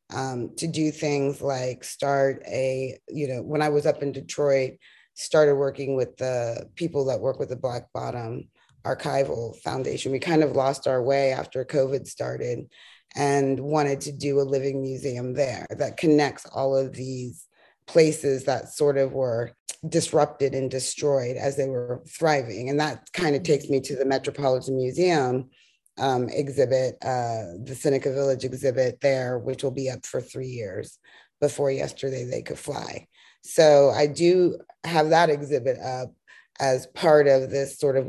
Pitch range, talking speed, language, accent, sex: 130-145 Hz, 165 wpm, English, American, female